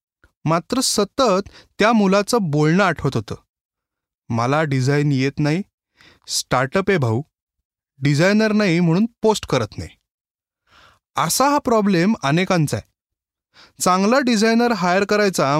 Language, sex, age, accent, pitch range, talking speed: Marathi, male, 20-39, native, 140-205 Hz, 110 wpm